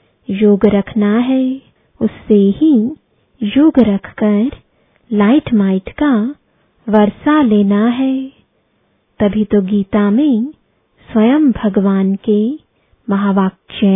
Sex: female